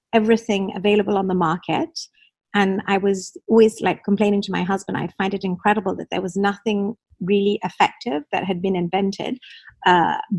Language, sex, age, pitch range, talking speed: English, female, 50-69, 185-210 Hz, 170 wpm